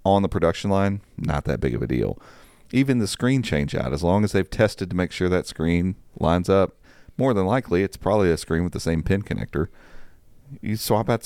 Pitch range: 80-105 Hz